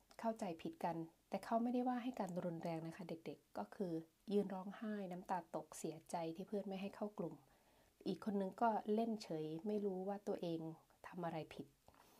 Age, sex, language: 20-39, female, Thai